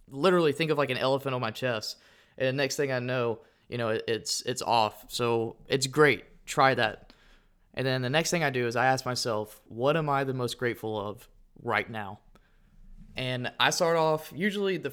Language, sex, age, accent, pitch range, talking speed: English, male, 20-39, American, 115-140 Hz, 205 wpm